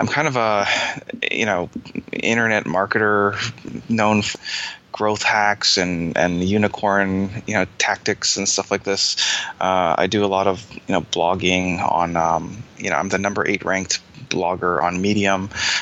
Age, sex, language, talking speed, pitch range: 20-39, male, English, 165 wpm, 90-100 Hz